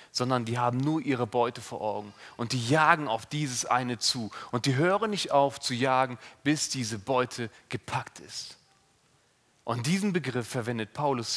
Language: German